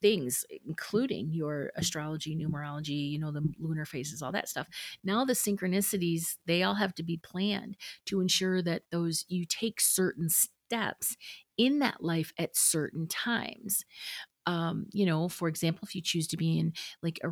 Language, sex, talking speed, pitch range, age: English, female, 170 wpm, 155-185 Hz, 40-59